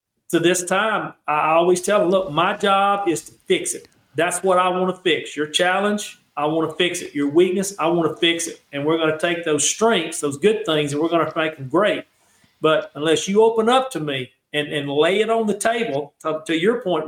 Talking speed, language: 245 wpm, English